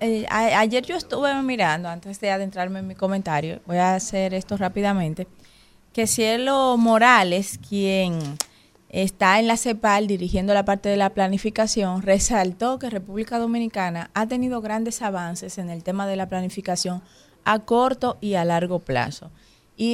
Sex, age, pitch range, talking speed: female, 20-39, 185-225 Hz, 155 wpm